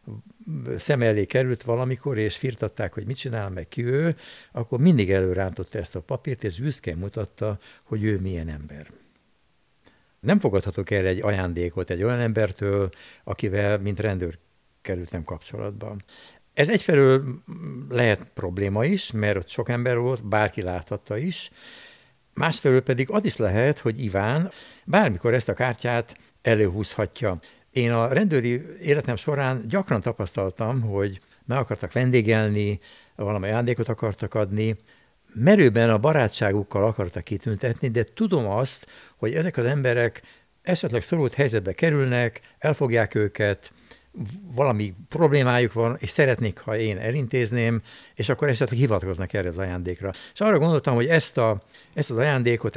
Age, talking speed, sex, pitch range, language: 60-79, 135 wpm, male, 105-130 Hz, Hungarian